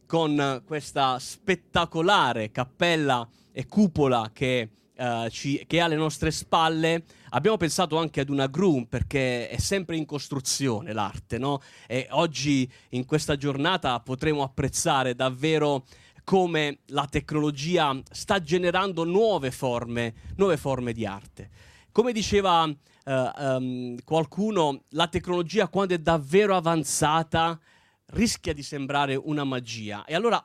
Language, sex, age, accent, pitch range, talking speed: Italian, male, 30-49, native, 130-175 Hz, 125 wpm